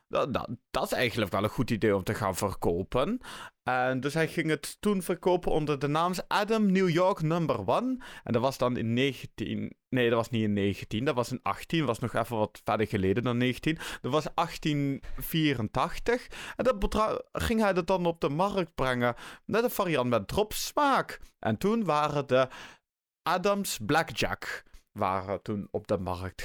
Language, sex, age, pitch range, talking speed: Dutch, male, 30-49, 120-195 Hz, 180 wpm